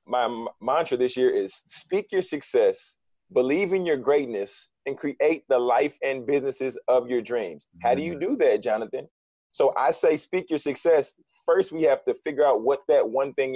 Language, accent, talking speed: English, American, 190 wpm